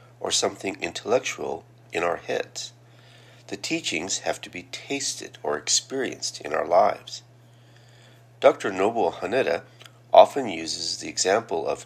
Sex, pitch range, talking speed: male, 105-125 Hz, 125 wpm